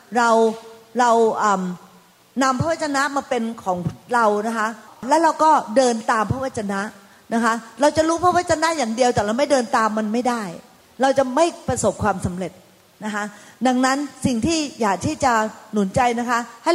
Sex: female